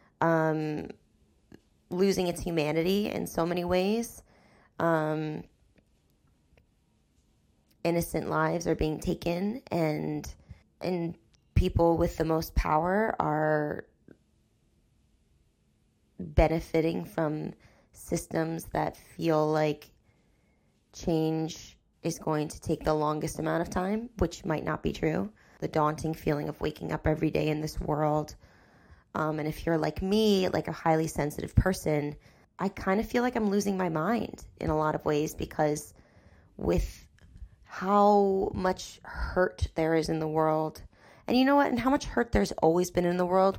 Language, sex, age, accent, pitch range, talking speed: English, female, 20-39, American, 150-170 Hz, 140 wpm